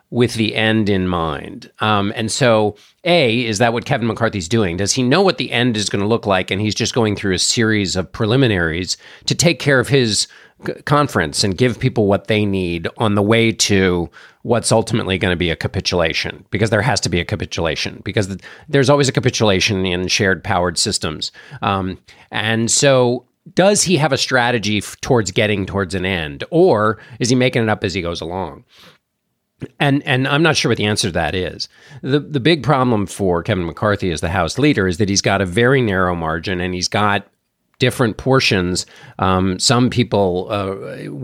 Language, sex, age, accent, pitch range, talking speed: English, male, 40-59, American, 95-120 Hz, 200 wpm